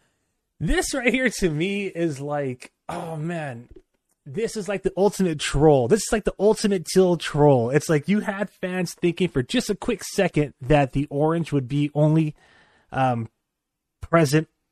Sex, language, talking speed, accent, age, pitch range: male, English, 165 wpm, American, 30-49, 125-160 Hz